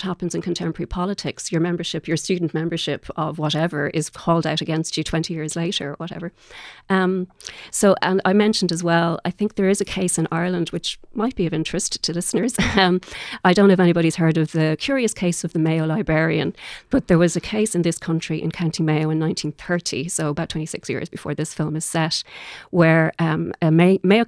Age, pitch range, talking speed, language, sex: 40-59, 155-175 Hz, 210 wpm, English, female